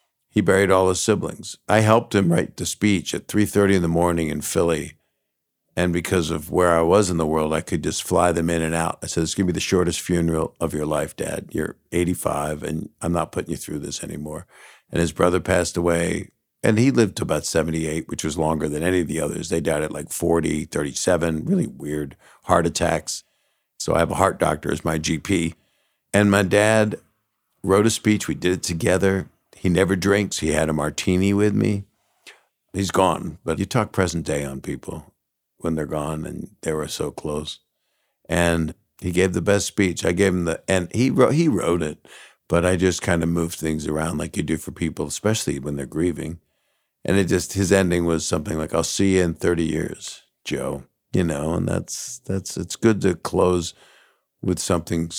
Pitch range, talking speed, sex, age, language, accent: 80-95 Hz, 205 wpm, male, 50-69, English, American